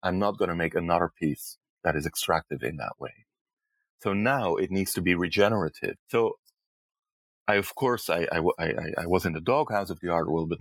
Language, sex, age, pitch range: English, male, 30-49, 85-105 Hz